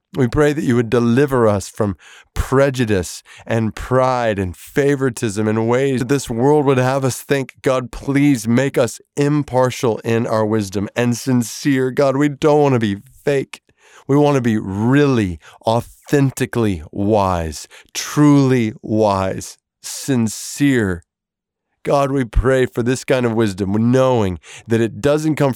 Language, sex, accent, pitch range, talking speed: English, male, American, 110-140 Hz, 145 wpm